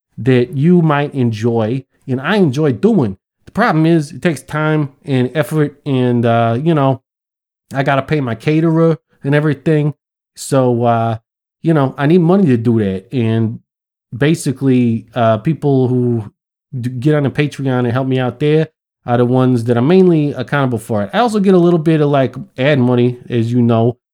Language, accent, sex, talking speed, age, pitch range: English, American, male, 185 wpm, 30-49, 125-170 Hz